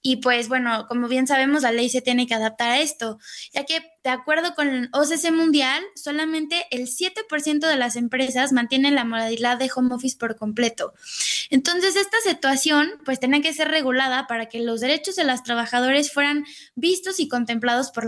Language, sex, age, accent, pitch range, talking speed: Spanish, female, 20-39, Mexican, 245-310 Hz, 185 wpm